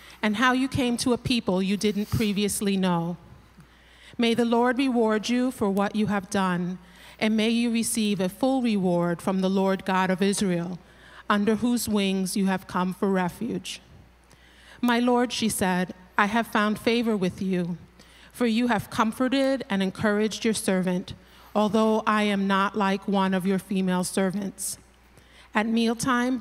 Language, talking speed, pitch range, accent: English, 165 wpm, 190-225 Hz, American